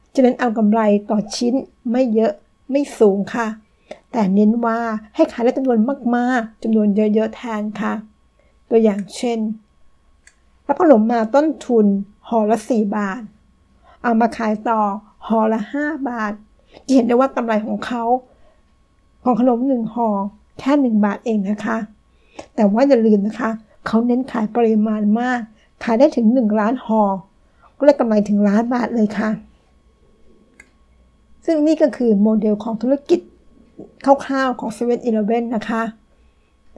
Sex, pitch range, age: female, 215-255 Hz, 60-79